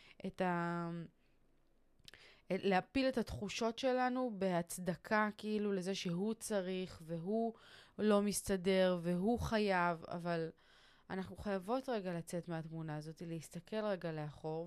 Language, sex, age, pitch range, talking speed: Hebrew, female, 20-39, 175-225 Hz, 110 wpm